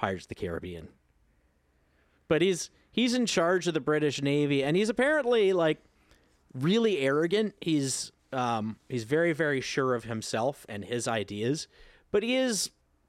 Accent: American